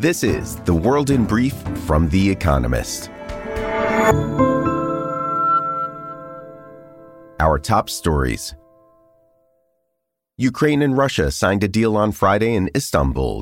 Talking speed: 100 wpm